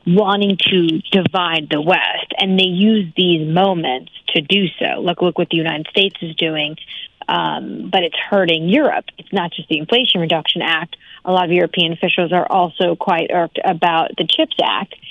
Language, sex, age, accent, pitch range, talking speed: English, female, 30-49, American, 170-200 Hz, 185 wpm